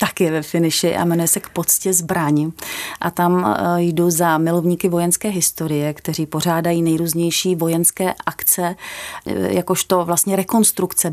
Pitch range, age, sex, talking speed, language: 170-195 Hz, 30-49, female, 130 wpm, Czech